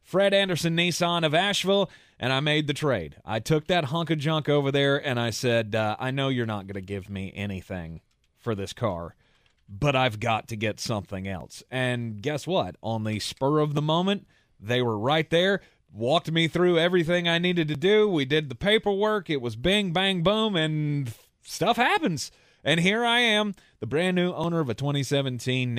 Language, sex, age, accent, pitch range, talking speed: English, male, 30-49, American, 130-175 Hz, 200 wpm